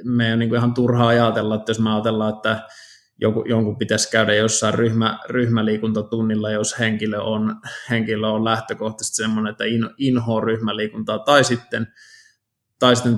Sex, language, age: male, Finnish, 20-39